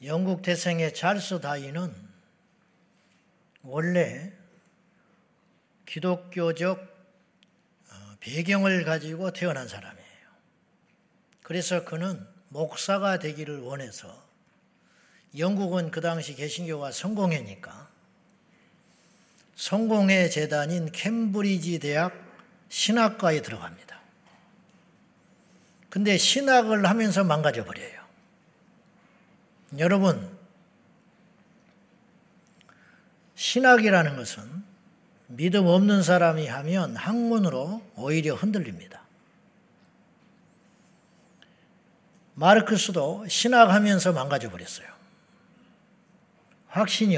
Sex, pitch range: male, 170-205 Hz